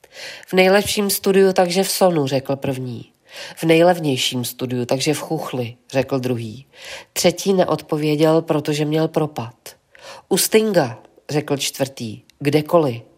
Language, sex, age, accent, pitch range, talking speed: Czech, female, 40-59, native, 140-175 Hz, 120 wpm